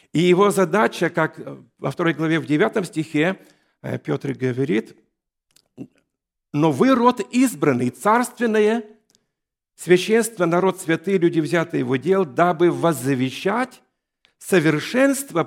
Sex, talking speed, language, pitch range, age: male, 105 wpm, Russian, 150-200 Hz, 50-69